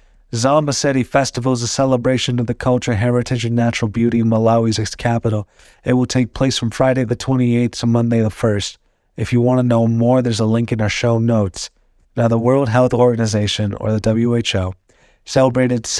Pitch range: 105-125 Hz